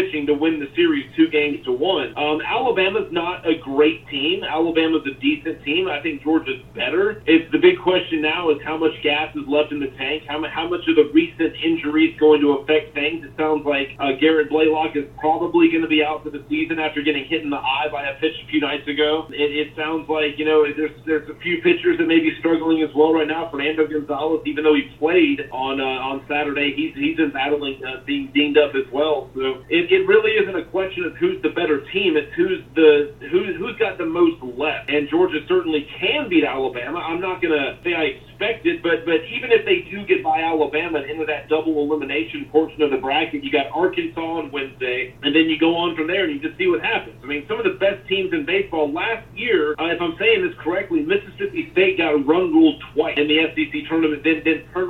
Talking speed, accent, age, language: 230 wpm, American, 30-49, English